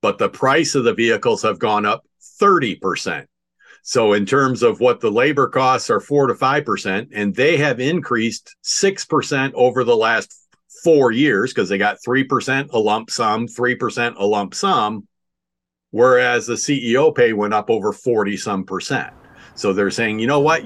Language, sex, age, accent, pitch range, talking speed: English, male, 50-69, American, 100-130 Hz, 170 wpm